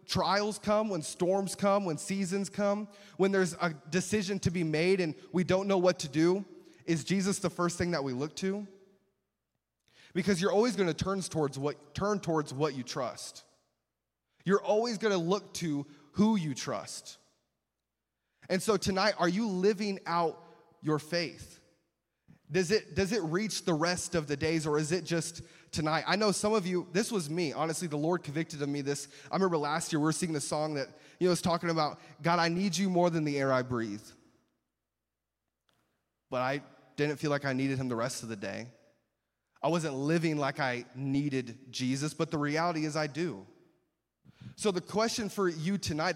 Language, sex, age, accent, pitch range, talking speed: English, male, 20-39, American, 145-190 Hz, 195 wpm